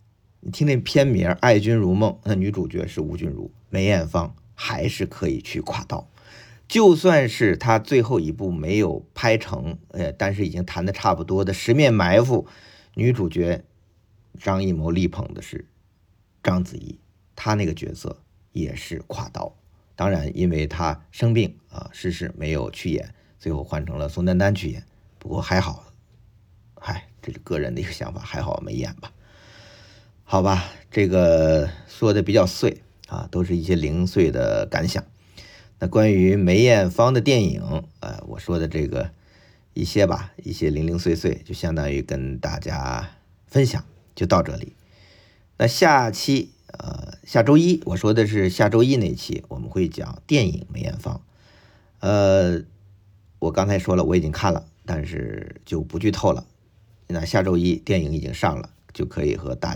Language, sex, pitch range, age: Chinese, male, 90-110 Hz, 50-69